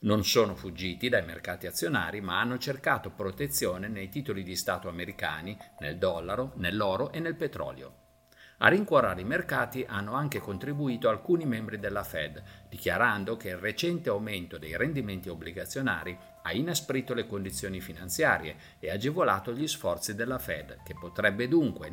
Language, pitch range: Italian, 90-130 Hz